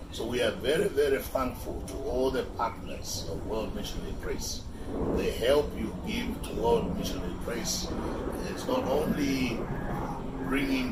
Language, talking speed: English, 145 wpm